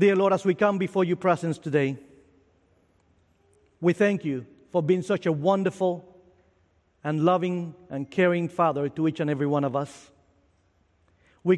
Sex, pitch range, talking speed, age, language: male, 150-195 Hz, 155 wpm, 50-69, English